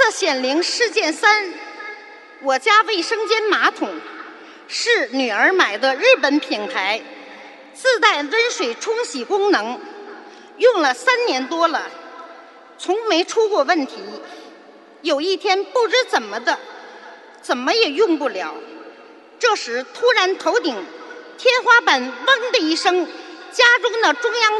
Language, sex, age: Chinese, female, 50-69